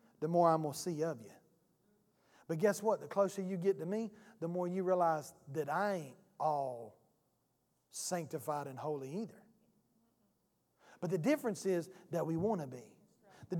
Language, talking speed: English, 170 wpm